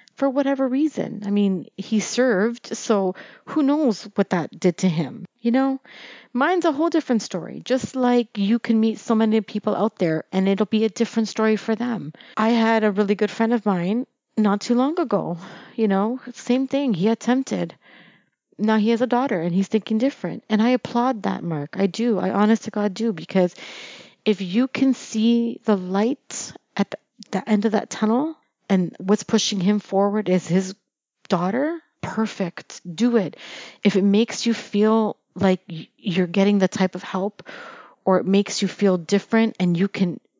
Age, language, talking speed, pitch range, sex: 30-49, English, 185 wpm, 190-235 Hz, female